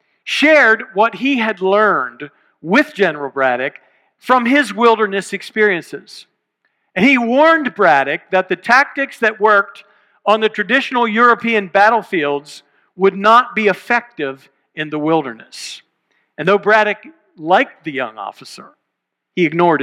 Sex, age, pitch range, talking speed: male, 50-69, 160-220 Hz, 125 wpm